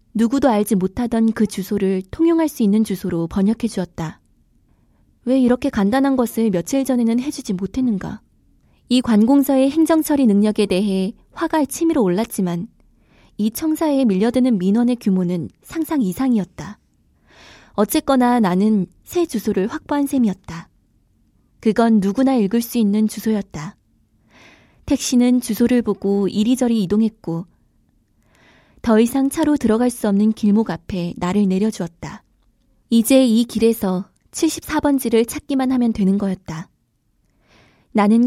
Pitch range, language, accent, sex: 190-250 Hz, Korean, native, female